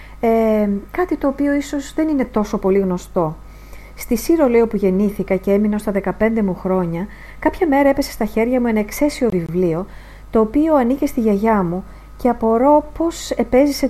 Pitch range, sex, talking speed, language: 195-270 Hz, female, 165 wpm, English